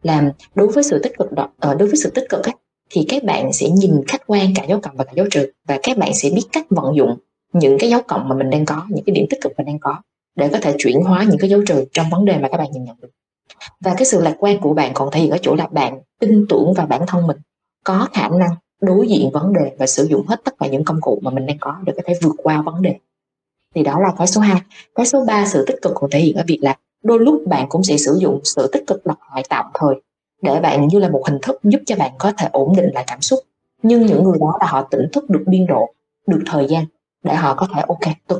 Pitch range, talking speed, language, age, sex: 145-200 Hz, 290 wpm, Vietnamese, 20-39, female